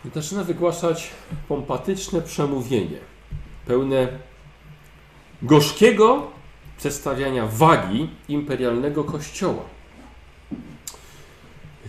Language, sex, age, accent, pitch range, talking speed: Polish, male, 50-69, native, 125-185 Hz, 60 wpm